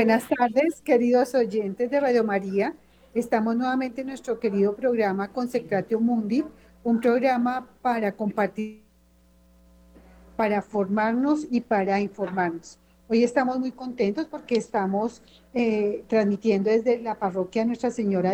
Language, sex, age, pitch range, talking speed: Spanish, female, 40-59, 200-245 Hz, 120 wpm